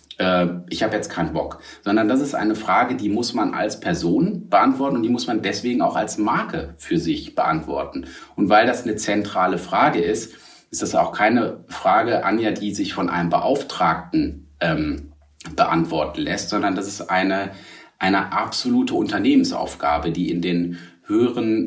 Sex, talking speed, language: male, 165 wpm, German